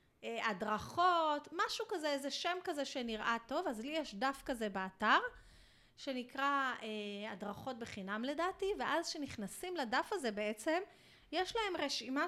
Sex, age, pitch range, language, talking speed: female, 30-49, 230-320 Hz, Hebrew, 130 wpm